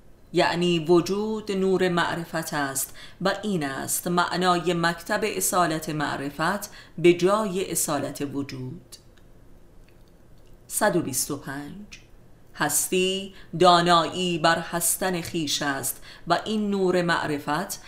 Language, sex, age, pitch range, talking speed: Persian, female, 30-49, 150-185 Hz, 90 wpm